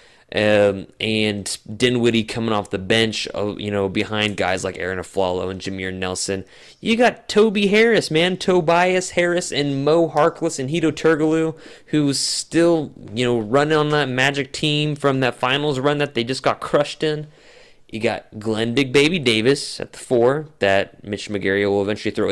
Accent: American